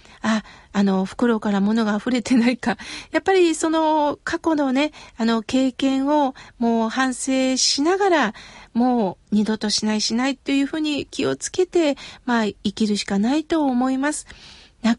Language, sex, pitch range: Japanese, female, 230-300 Hz